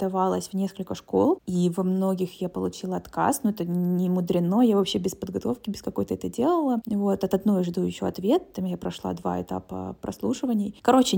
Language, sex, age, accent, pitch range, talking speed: Russian, female, 20-39, native, 175-210 Hz, 195 wpm